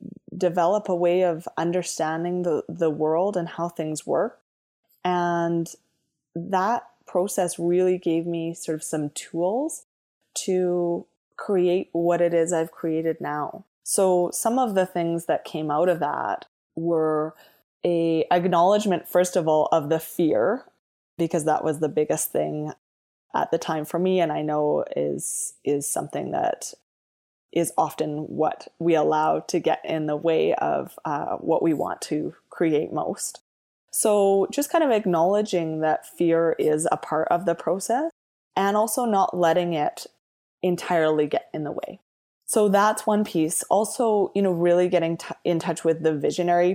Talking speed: 160 wpm